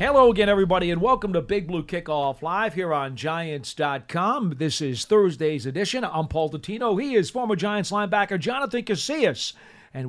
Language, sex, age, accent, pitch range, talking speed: English, male, 40-59, American, 145-195 Hz, 165 wpm